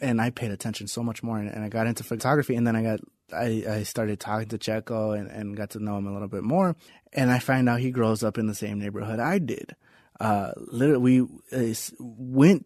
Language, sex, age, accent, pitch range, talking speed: English, male, 20-39, American, 110-135 Hz, 230 wpm